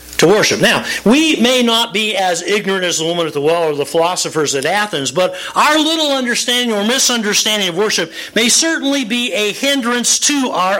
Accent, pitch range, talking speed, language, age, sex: American, 135-220 Hz, 185 wpm, English, 50-69, male